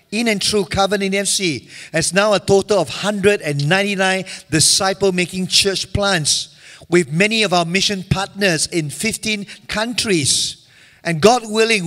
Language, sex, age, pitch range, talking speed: English, male, 50-69, 150-195 Hz, 130 wpm